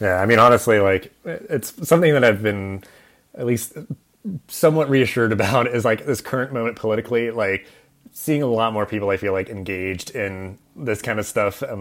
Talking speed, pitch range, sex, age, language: 190 wpm, 100-140 Hz, male, 30-49, English